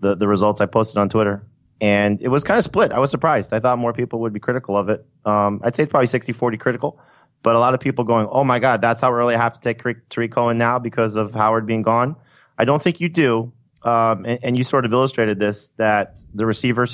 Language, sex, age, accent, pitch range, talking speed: English, male, 30-49, American, 110-145 Hz, 260 wpm